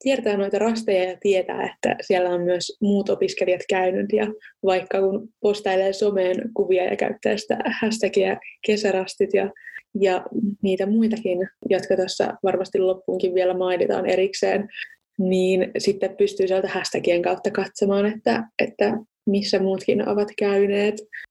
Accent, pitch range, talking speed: native, 190-215 Hz, 130 wpm